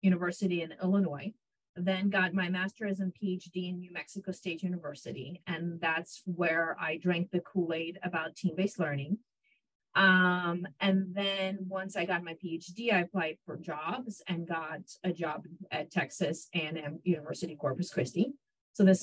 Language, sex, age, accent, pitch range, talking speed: English, female, 30-49, American, 170-195 Hz, 155 wpm